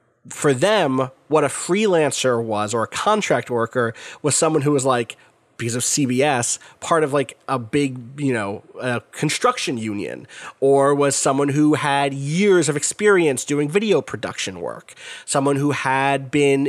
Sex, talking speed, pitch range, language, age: male, 160 wpm, 130-170 Hz, English, 30-49